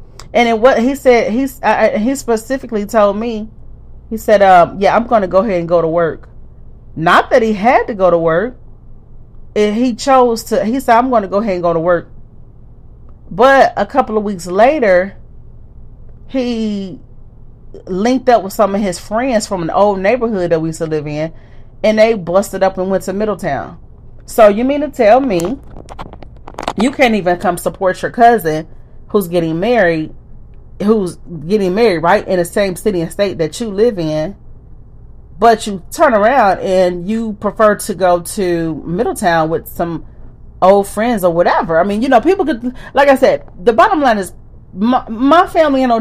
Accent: American